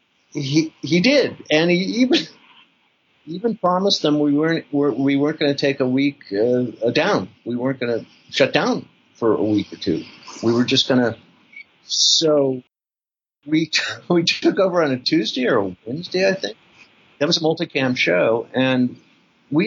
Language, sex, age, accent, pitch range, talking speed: English, male, 60-79, American, 110-150 Hz, 175 wpm